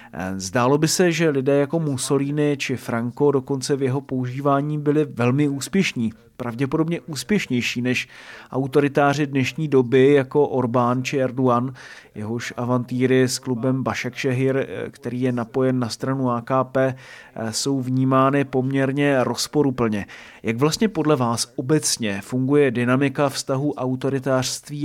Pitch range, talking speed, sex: 125-145 Hz, 120 wpm, male